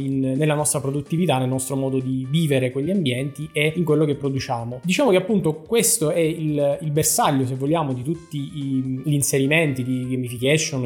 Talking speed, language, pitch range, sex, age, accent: 170 wpm, Italian, 135-155 Hz, male, 20-39, native